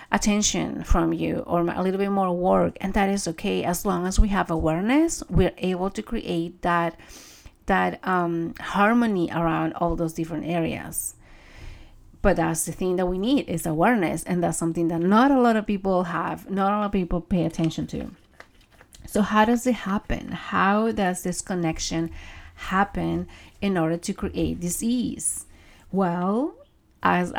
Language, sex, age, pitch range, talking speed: English, female, 30-49, 170-195 Hz, 165 wpm